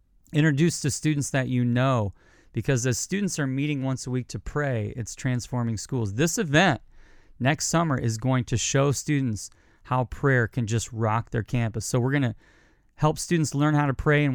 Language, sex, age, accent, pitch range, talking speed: English, male, 30-49, American, 115-140 Hz, 190 wpm